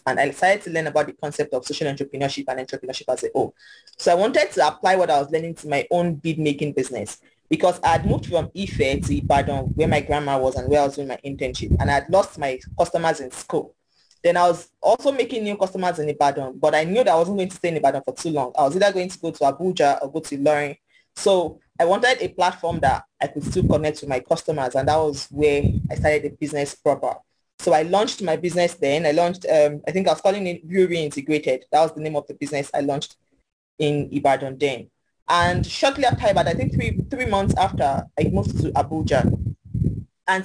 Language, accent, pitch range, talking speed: English, Nigerian, 140-175 Hz, 235 wpm